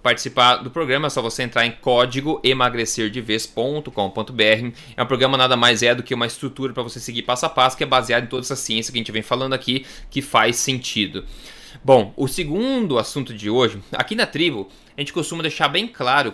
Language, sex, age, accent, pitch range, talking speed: Portuguese, male, 20-39, Brazilian, 125-165 Hz, 215 wpm